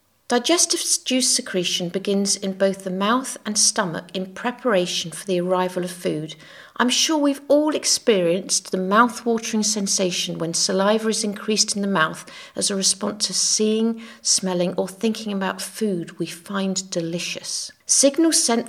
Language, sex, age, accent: English, female, 50-69, British